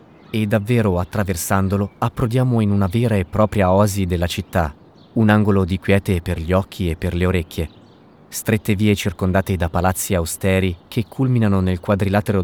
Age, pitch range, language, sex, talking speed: 30-49, 90-110 Hz, Italian, male, 160 wpm